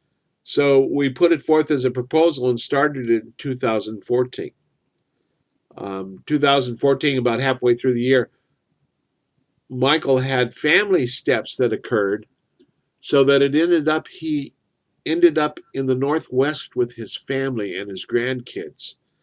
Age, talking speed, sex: 50-69, 135 wpm, male